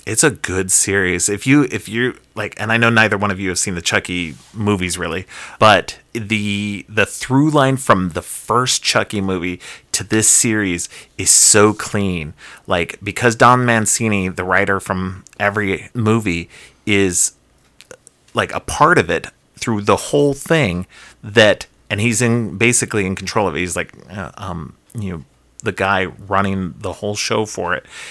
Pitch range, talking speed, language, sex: 95-115 Hz, 170 wpm, English, male